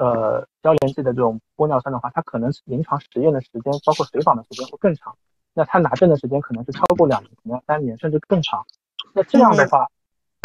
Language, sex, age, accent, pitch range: Chinese, male, 20-39, native, 125-165 Hz